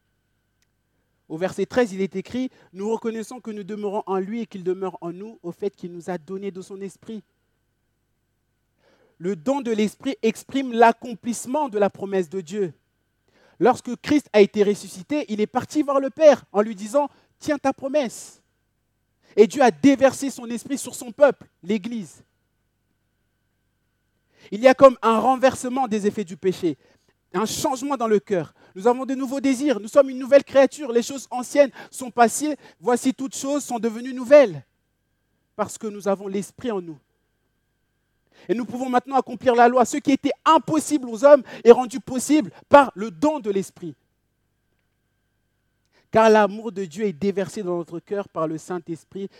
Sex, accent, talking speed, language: male, French, 170 wpm, French